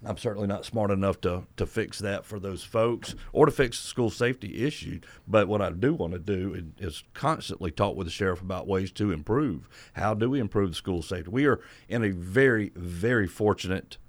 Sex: male